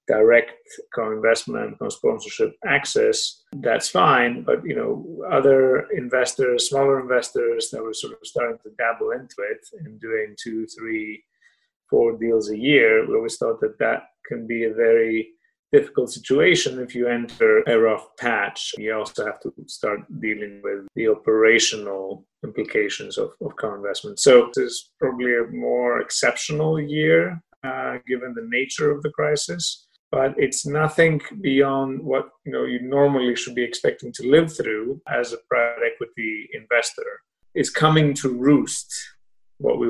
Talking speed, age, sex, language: 150 wpm, 30-49, male, English